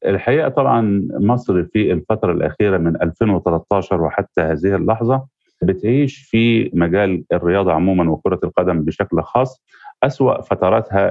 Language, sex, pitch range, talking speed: Arabic, male, 95-115 Hz, 120 wpm